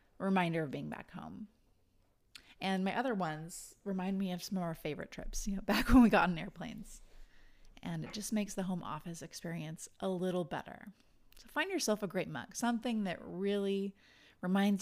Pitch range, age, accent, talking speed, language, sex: 175-215 Hz, 30-49, American, 185 wpm, English, female